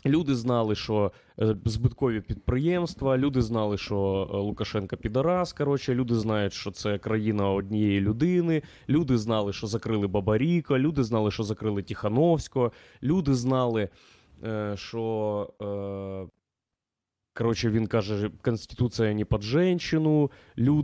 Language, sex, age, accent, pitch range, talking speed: Ukrainian, male, 20-39, native, 110-140 Hz, 110 wpm